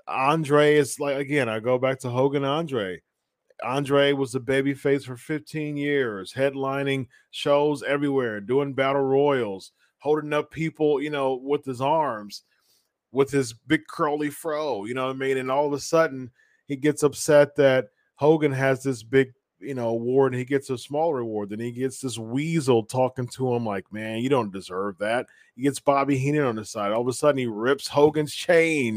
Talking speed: 190 wpm